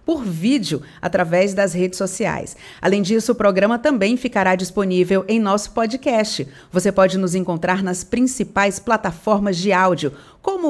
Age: 40-59